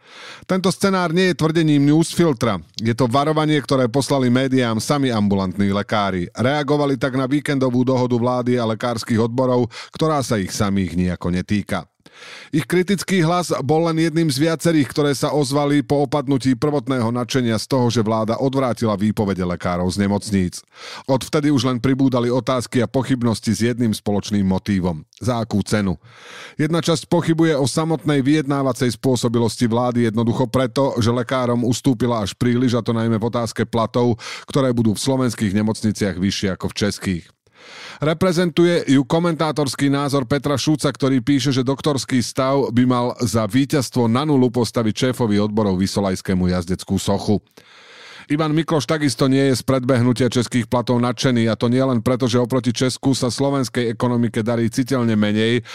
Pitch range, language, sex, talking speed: 110-140 Hz, Slovak, male, 155 wpm